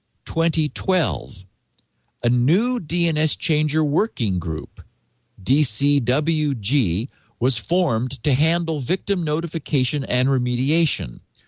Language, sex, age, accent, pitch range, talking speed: English, male, 50-69, American, 115-160 Hz, 85 wpm